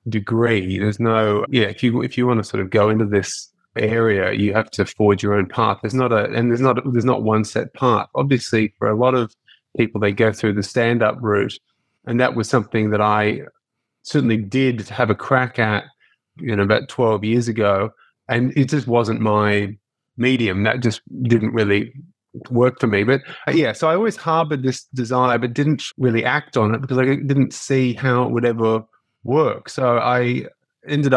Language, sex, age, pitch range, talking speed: English, male, 20-39, 110-130 Hz, 200 wpm